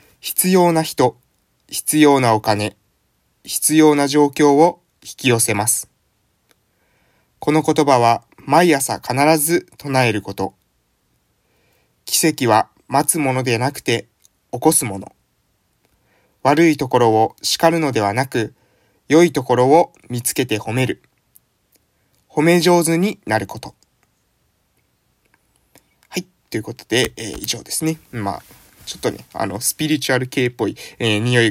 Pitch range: 100-150 Hz